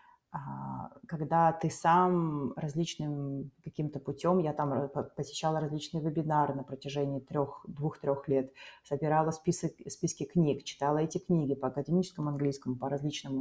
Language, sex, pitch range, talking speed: Russian, female, 140-175 Hz, 120 wpm